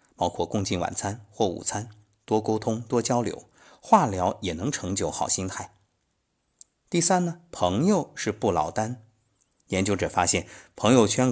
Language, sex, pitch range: Chinese, male, 90-130 Hz